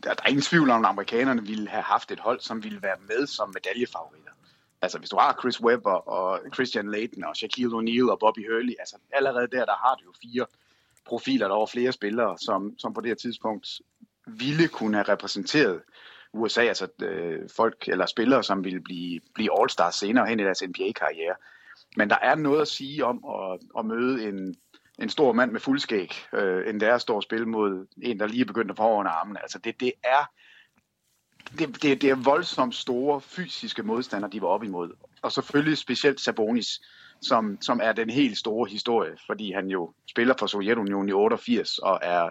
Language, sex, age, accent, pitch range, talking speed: English, male, 30-49, Danish, 105-145 Hz, 195 wpm